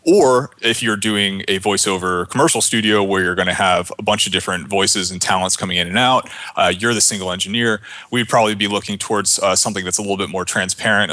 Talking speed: 225 wpm